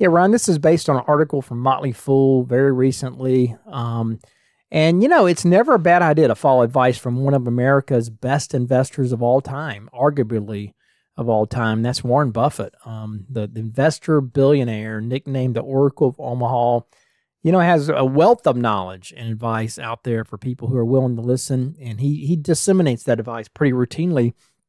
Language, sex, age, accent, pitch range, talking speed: English, male, 40-59, American, 120-155 Hz, 185 wpm